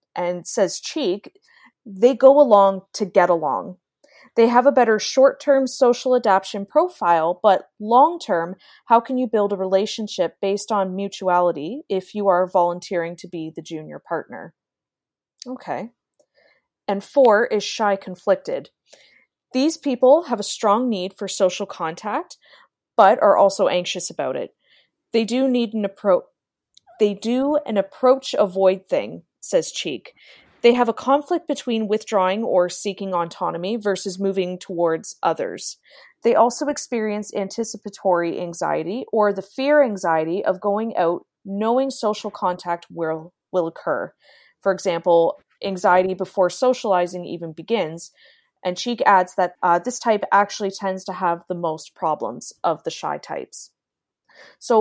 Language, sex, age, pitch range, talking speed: English, female, 20-39, 185-245 Hz, 140 wpm